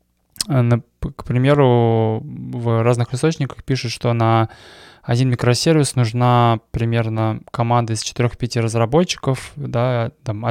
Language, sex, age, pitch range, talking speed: Russian, male, 20-39, 110-125 Hz, 105 wpm